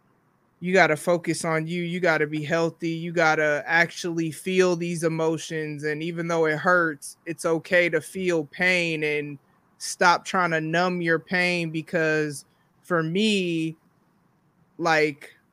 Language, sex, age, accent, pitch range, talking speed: English, male, 20-39, American, 160-185 Hz, 140 wpm